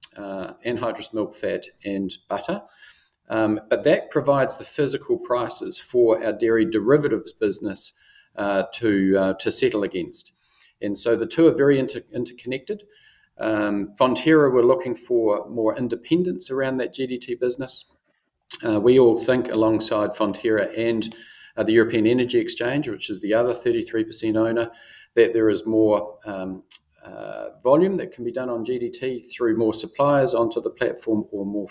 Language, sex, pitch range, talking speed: English, male, 110-140 Hz, 155 wpm